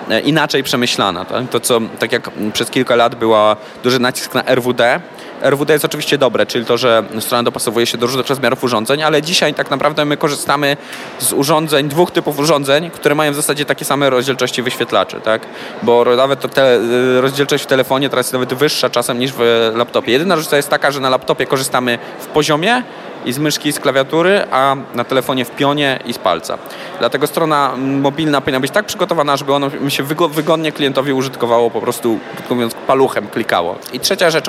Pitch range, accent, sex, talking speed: 120-150 Hz, native, male, 185 wpm